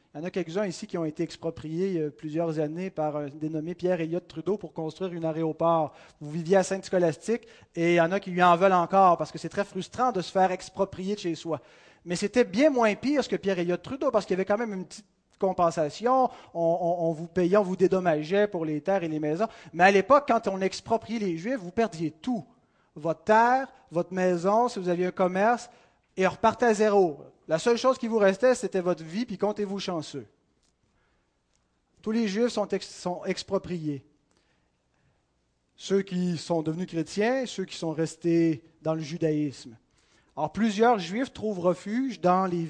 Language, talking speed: French, 200 wpm